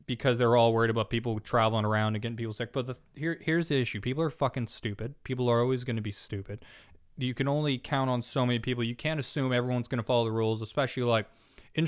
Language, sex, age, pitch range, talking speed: English, male, 20-39, 110-125 Hz, 250 wpm